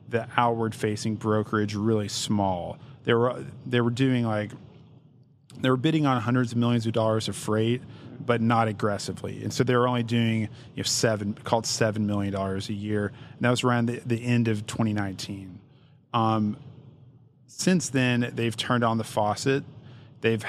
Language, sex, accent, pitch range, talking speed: English, male, American, 110-125 Hz, 175 wpm